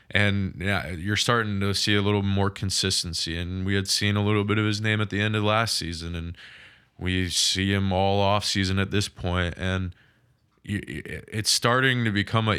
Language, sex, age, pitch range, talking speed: English, male, 20-39, 95-110 Hz, 200 wpm